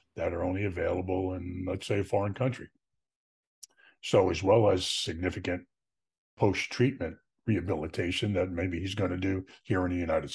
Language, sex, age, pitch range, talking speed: English, male, 50-69, 90-115 Hz, 150 wpm